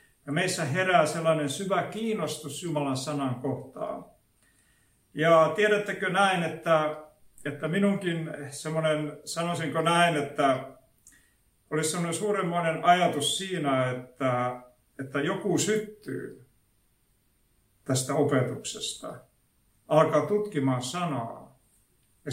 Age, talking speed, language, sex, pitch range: 50-69, 90 wpm, Finnish, male, 140-185 Hz